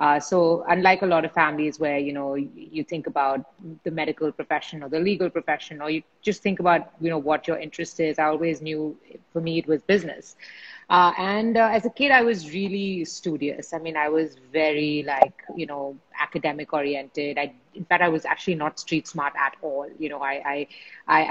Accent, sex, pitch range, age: Indian, female, 155-190 Hz, 30-49